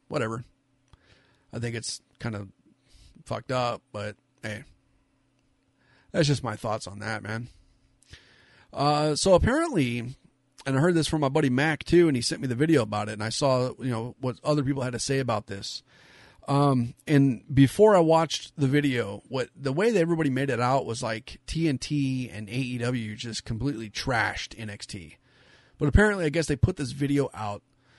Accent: American